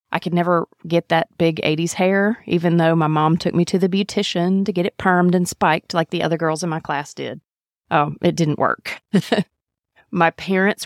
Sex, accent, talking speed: female, American, 205 wpm